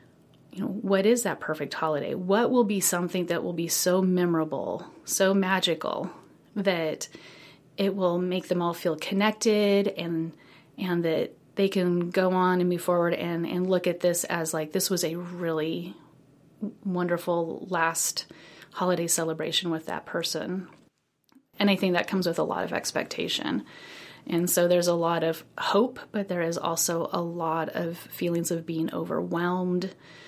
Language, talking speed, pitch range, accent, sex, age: English, 165 wpm, 165-185 Hz, American, female, 30-49